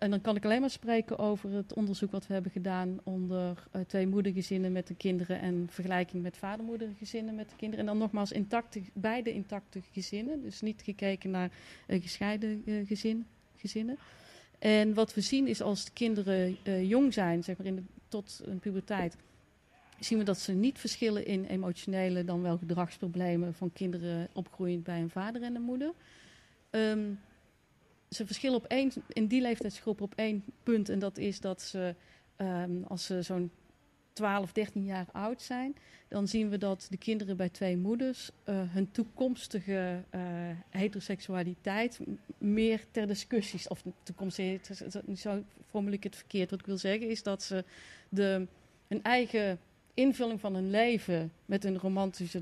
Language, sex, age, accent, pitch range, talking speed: Dutch, female, 40-59, Dutch, 185-220 Hz, 170 wpm